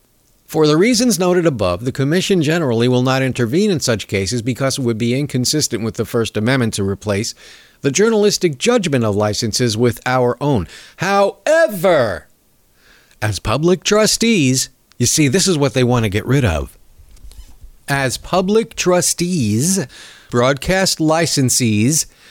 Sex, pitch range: male, 115-180 Hz